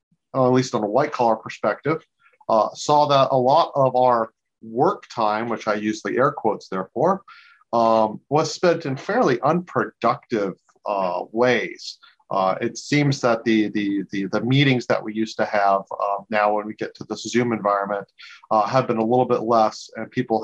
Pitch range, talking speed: 110-130 Hz, 185 wpm